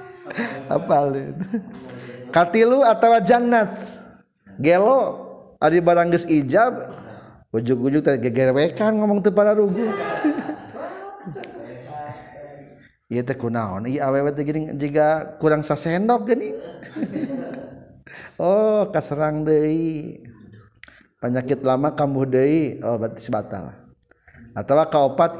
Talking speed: 80 wpm